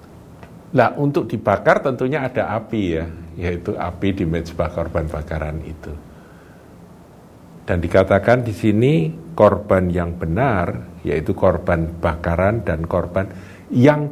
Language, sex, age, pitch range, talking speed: Indonesian, male, 50-69, 85-110 Hz, 115 wpm